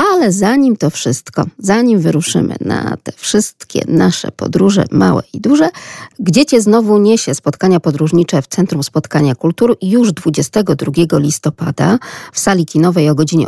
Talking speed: 140 wpm